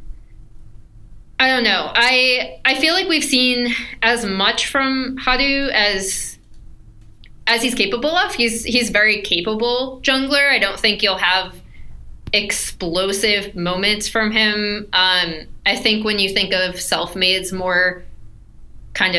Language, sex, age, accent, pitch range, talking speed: English, female, 20-39, American, 170-225 Hz, 130 wpm